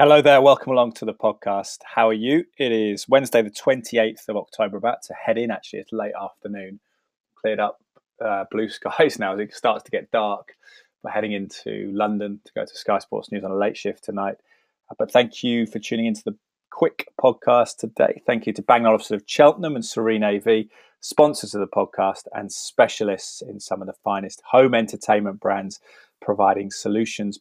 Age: 20-39